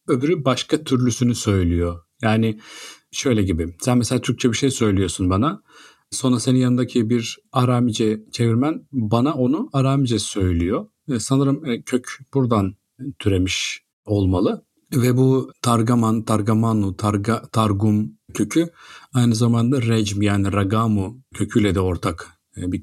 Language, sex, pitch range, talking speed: Turkish, male, 100-130 Hz, 115 wpm